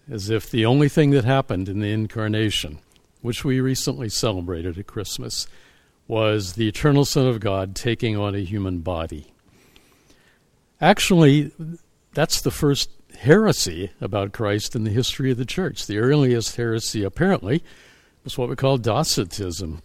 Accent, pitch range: American, 100-130 Hz